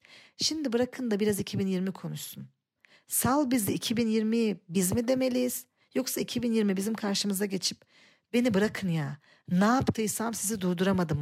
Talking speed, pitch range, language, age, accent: 130 wpm, 165-225 Hz, Turkish, 40-59, native